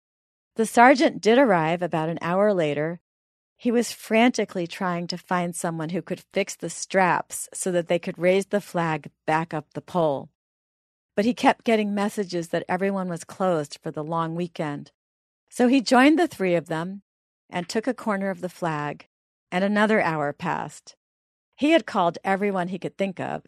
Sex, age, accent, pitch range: female, 40-59, American, 160-210 Hz